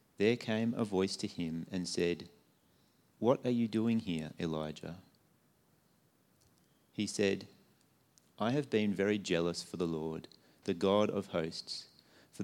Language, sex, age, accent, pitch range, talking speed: English, male, 30-49, Australian, 90-110 Hz, 140 wpm